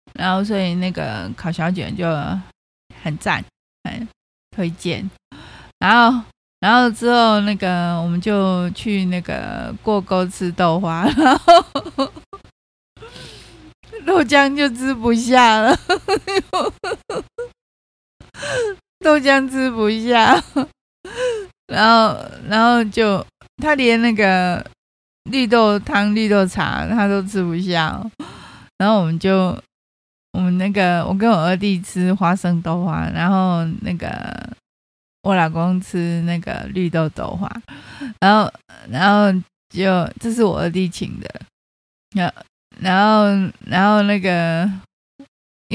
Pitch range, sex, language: 180-235 Hz, female, Chinese